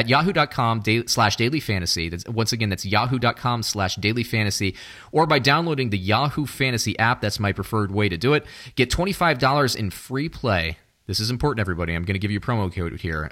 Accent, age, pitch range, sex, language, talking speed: American, 30-49, 100-125 Hz, male, English, 190 wpm